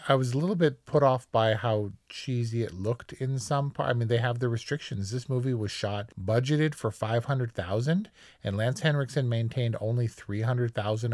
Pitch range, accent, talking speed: 105-130 Hz, American, 185 wpm